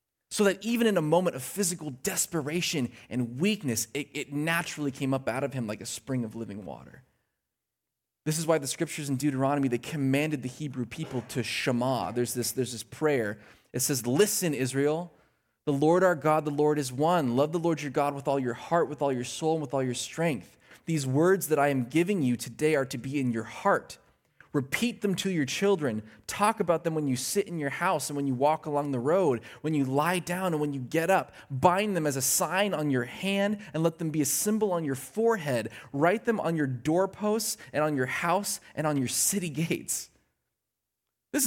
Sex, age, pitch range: male, 20-39, 135-185 Hz